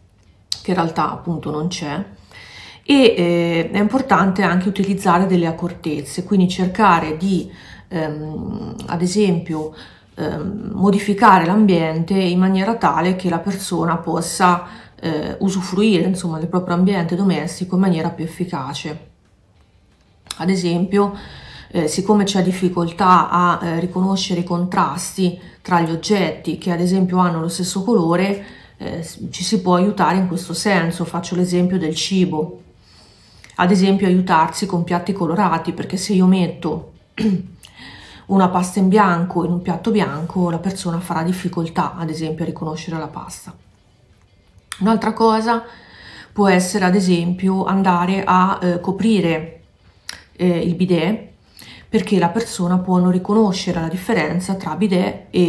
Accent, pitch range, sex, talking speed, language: native, 165-190 Hz, female, 135 wpm, Italian